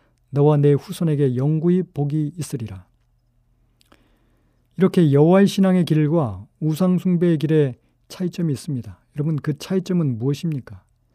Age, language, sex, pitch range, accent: 40-59, Korean, male, 130-180 Hz, native